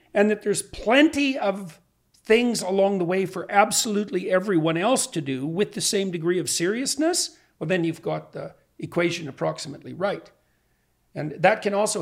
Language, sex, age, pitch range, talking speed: English, male, 50-69, 140-190 Hz, 165 wpm